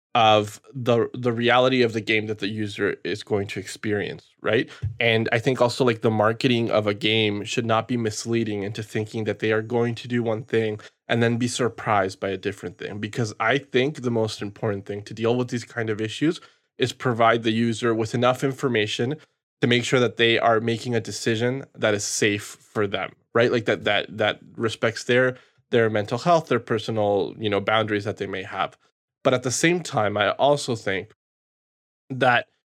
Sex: male